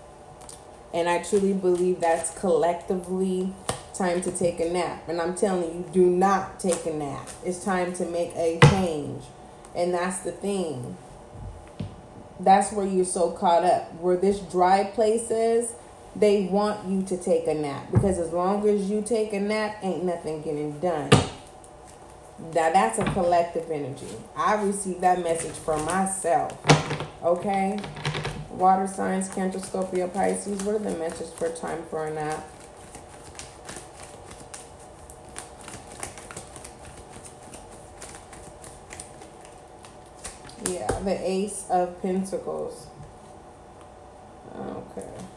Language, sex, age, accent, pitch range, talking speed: English, female, 30-49, American, 165-200 Hz, 120 wpm